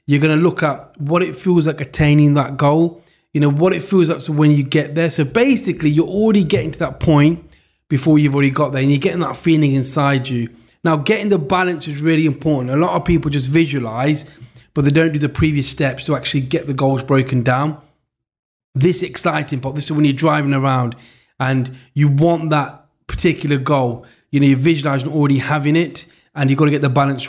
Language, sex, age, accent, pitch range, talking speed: English, male, 20-39, British, 135-160 Hz, 215 wpm